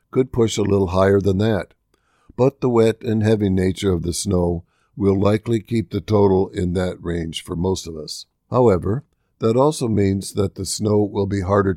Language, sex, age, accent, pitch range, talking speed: English, male, 60-79, American, 90-105 Hz, 195 wpm